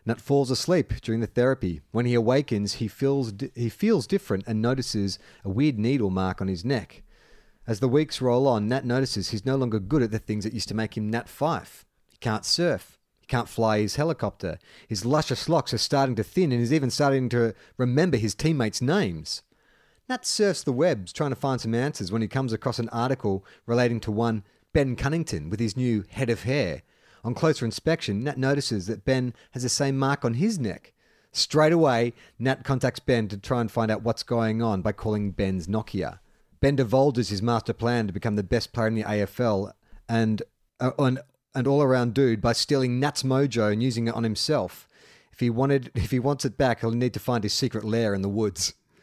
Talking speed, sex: 210 wpm, male